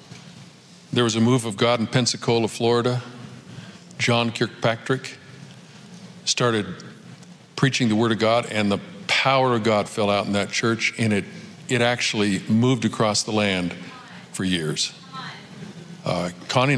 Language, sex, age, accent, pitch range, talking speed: English, male, 50-69, American, 110-170 Hz, 140 wpm